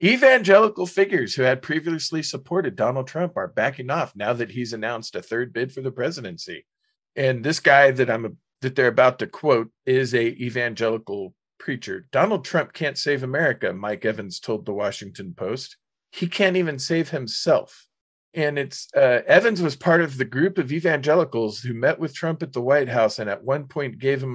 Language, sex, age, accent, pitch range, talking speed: English, male, 40-59, American, 120-165 Hz, 190 wpm